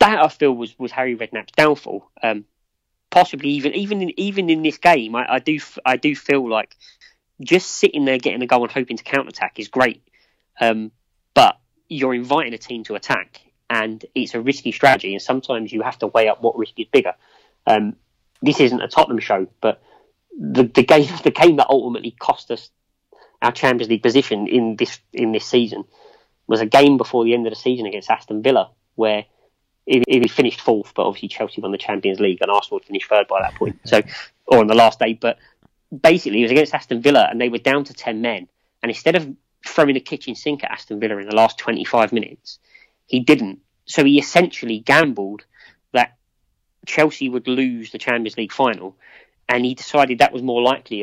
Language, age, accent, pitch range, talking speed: English, 20-39, British, 115-150 Hz, 200 wpm